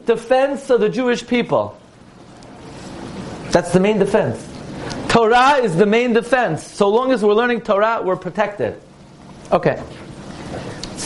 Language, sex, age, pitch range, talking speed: English, male, 30-49, 155-235 Hz, 130 wpm